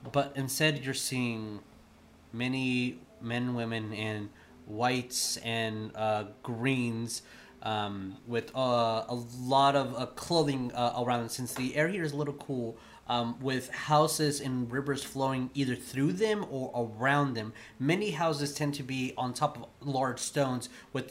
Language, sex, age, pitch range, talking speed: English, male, 20-39, 115-135 Hz, 155 wpm